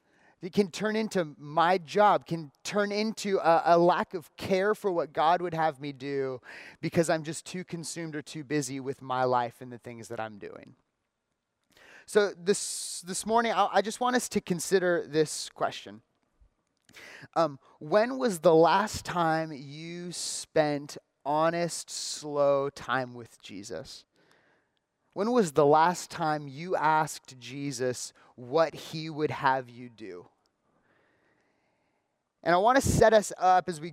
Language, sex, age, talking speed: English, male, 30-49, 155 wpm